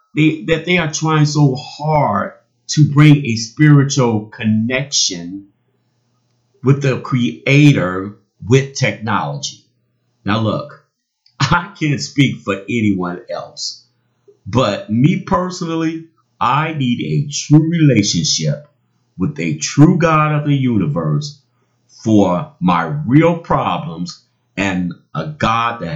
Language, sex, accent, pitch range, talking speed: English, male, American, 105-145 Hz, 110 wpm